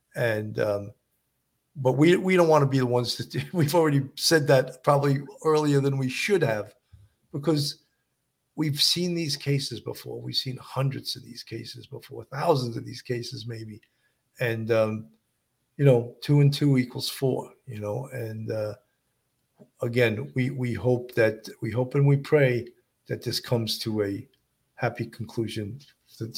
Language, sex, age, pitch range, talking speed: English, male, 50-69, 120-145 Hz, 165 wpm